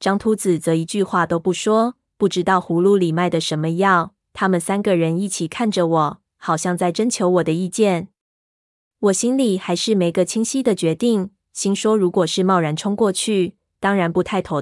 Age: 20-39